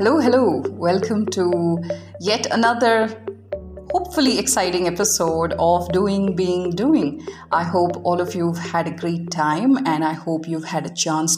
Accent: Indian